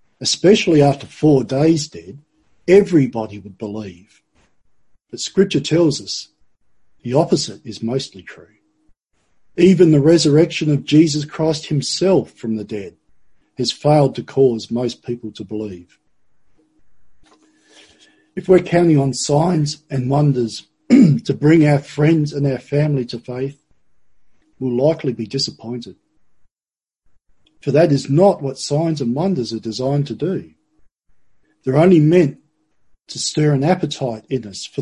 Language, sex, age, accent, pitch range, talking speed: English, male, 50-69, Australian, 120-160 Hz, 135 wpm